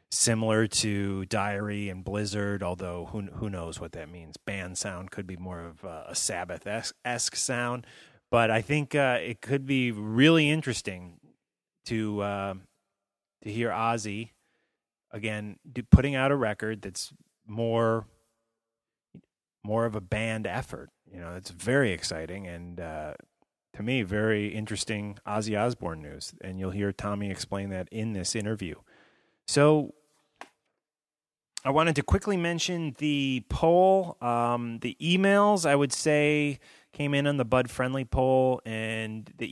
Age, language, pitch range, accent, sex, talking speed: 30-49, English, 100-130 Hz, American, male, 145 wpm